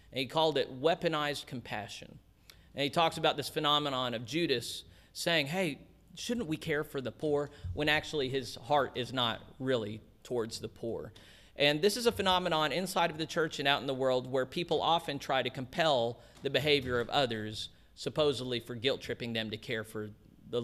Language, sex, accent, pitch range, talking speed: English, male, American, 110-150 Hz, 185 wpm